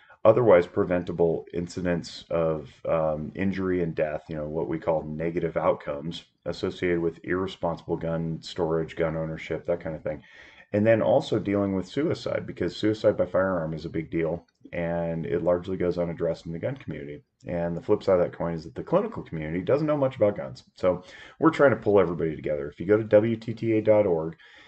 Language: English